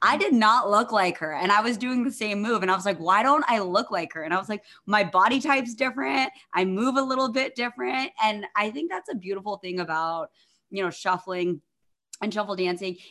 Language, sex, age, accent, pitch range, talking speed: English, female, 20-39, American, 160-195 Hz, 235 wpm